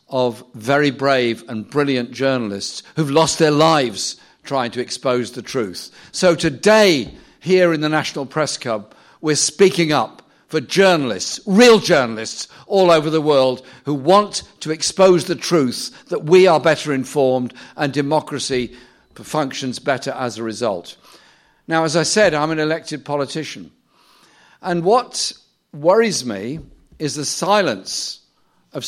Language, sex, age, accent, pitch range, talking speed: English, male, 50-69, British, 135-175 Hz, 140 wpm